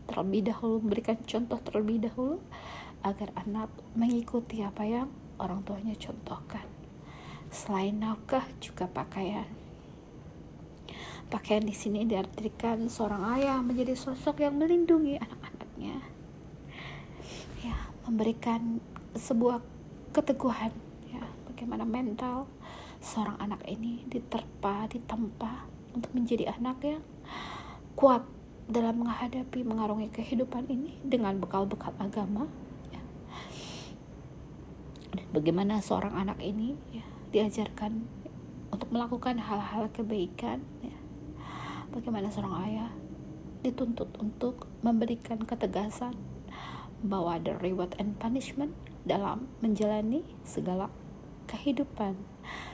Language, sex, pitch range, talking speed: Indonesian, female, 200-245 Hz, 90 wpm